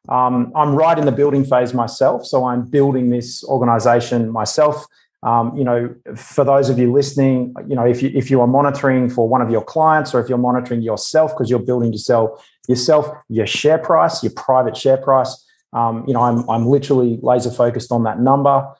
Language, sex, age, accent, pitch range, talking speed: English, male, 30-49, Australian, 120-140 Hz, 200 wpm